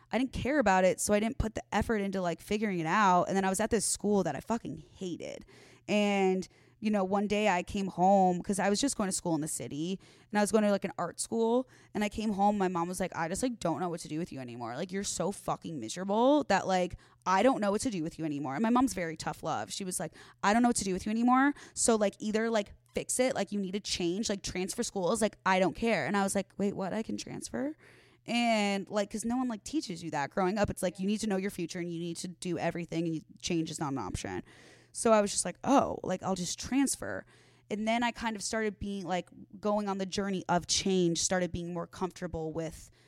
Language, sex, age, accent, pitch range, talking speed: English, female, 20-39, American, 170-210 Hz, 270 wpm